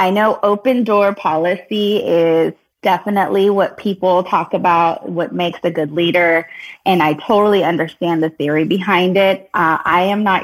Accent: American